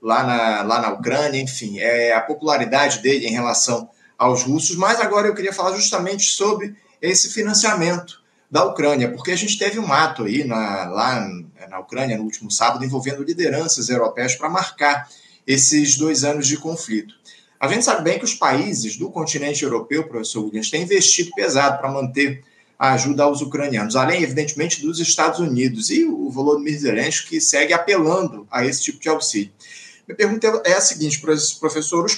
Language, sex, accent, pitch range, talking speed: Portuguese, male, Brazilian, 135-175 Hz, 175 wpm